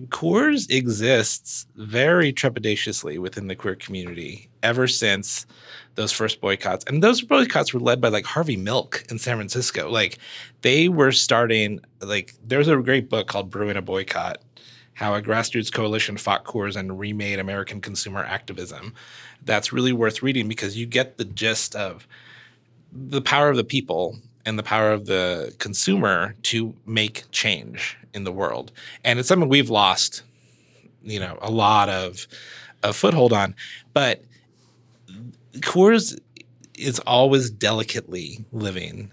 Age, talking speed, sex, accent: 30-49, 145 wpm, male, American